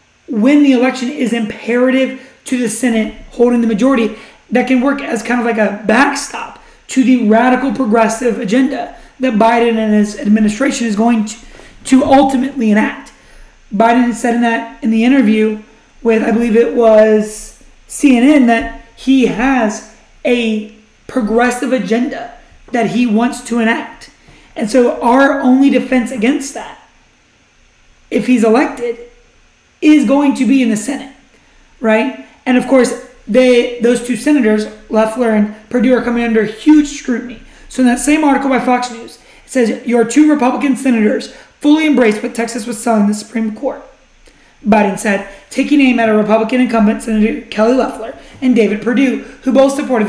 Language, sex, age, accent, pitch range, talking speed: English, male, 30-49, American, 225-265 Hz, 160 wpm